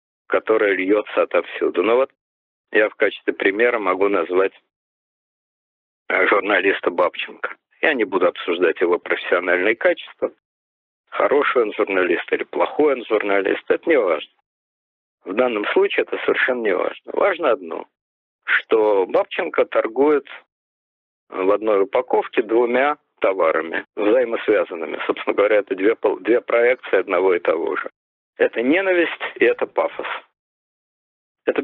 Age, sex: 50-69, male